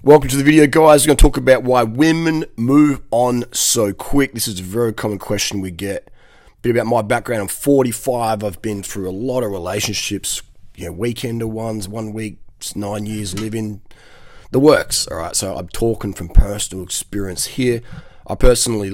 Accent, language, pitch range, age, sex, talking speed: Australian, English, 95-115 Hz, 30-49, male, 190 wpm